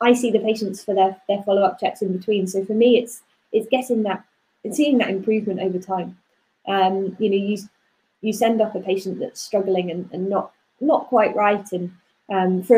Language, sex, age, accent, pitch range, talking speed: English, female, 20-39, British, 190-220 Hz, 205 wpm